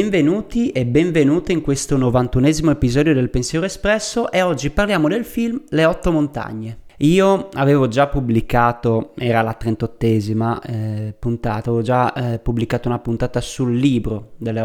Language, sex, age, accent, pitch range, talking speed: Italian, male, 30-49, native, 120-165 Hz, 150 wpm